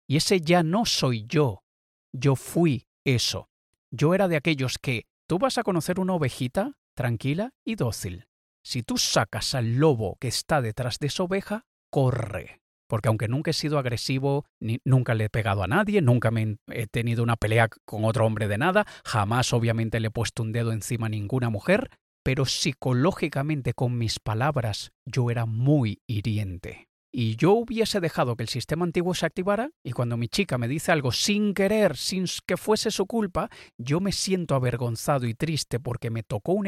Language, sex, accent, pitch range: Spanish, male, Spanish, 115-150 Hz